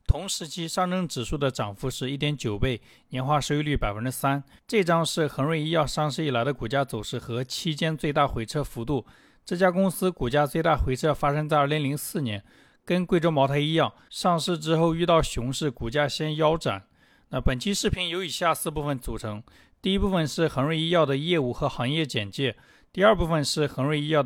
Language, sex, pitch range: Chinese, male, 130-165 Hz